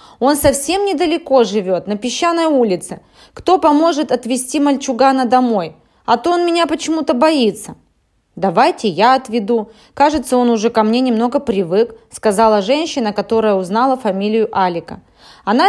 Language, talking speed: Russian, 135 wpm